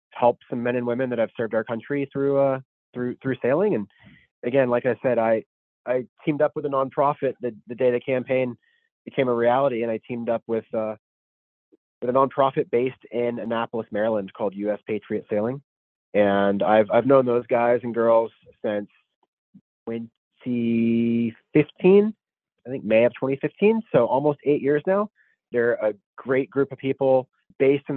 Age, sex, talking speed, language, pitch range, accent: 30-49, male, 170 wpm, English, 110-140 Hz, American